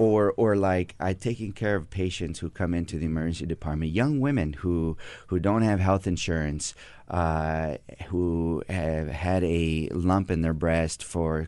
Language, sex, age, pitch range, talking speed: English, male, 30-49, 80-100 Hz, 160 wpm